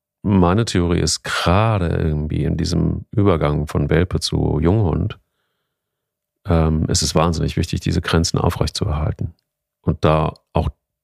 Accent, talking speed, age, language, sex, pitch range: German, 120 wpm, 40-59, German, male, 80-100 Hz